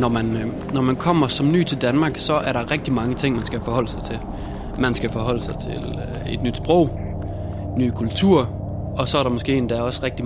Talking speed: 220 wpm